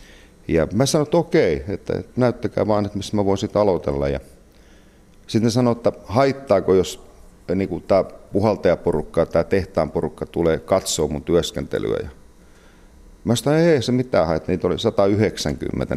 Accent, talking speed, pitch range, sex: native, 145 wpm, 80-115 Hz, male